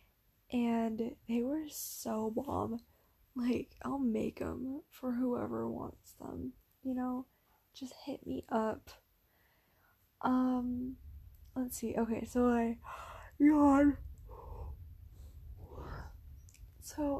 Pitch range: 225-275 Hz